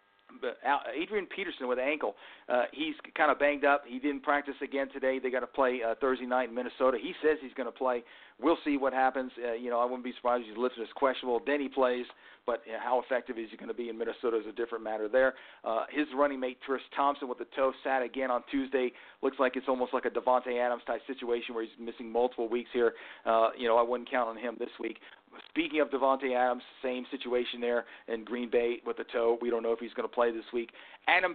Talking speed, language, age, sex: 245 wpm, English, 40-59, male